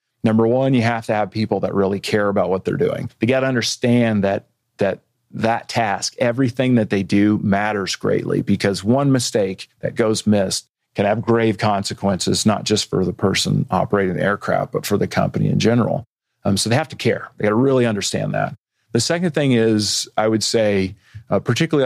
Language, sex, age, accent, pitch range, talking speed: English, male, 40-59, American, 105-120 Hz, 200 wpm